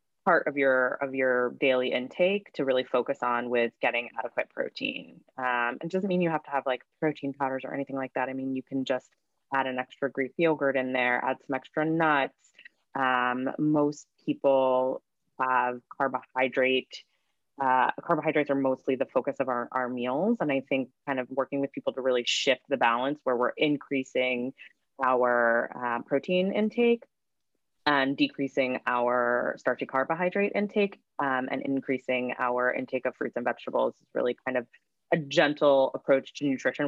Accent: American